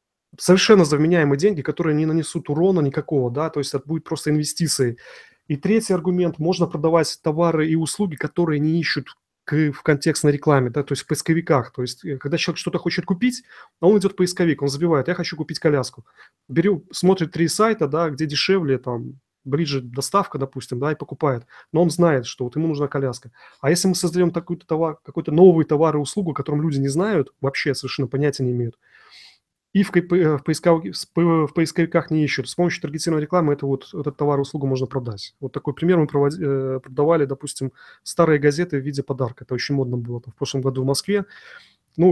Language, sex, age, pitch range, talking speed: Russian, male, 30-49, 140-170 Hz, 190 wpm